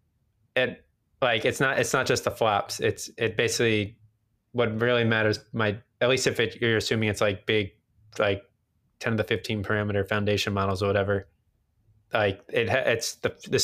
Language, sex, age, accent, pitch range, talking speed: English, male, 20-39, American, 100-115 Hz, 175 wpm